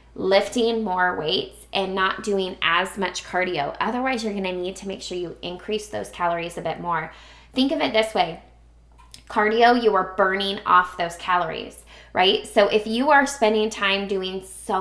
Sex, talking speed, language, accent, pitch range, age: female, 180 wpm, English, American, 180-220 Hz, 20-39